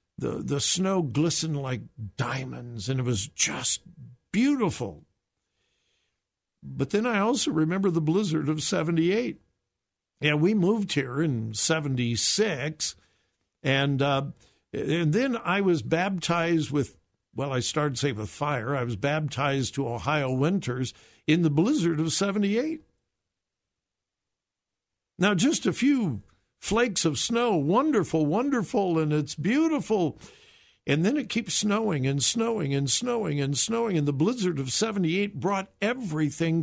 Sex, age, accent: male, 60-79, American